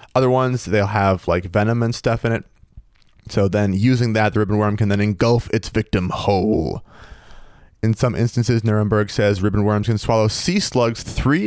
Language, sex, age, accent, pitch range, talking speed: English, male, 30-49, American, 105-135 Hz, 185 wpm